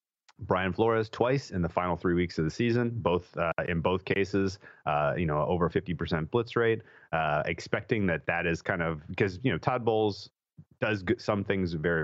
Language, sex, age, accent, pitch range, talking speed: English, male, 30-49, American, 75-90 Hz, 195 wpm